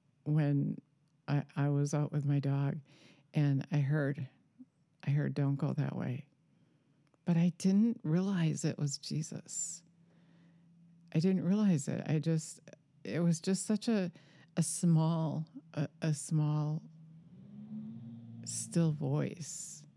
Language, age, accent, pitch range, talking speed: English, 50-69, American, 145-175 Hz, 125 wpm